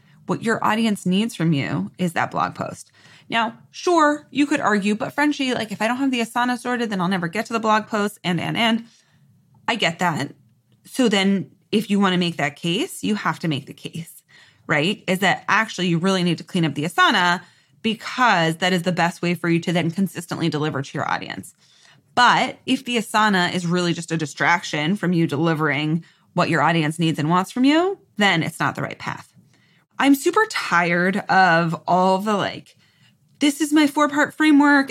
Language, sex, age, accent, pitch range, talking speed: English, female, 20-39, American, 170-240 Hz, 205 wpm